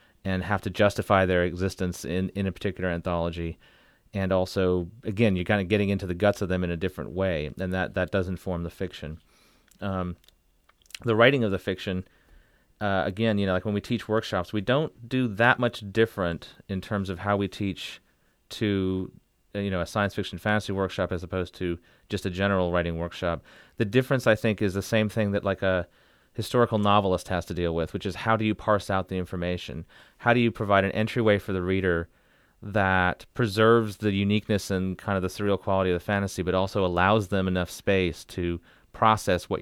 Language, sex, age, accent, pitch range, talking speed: English, male, 30-49, American, 90-105 Hz, 205 wpm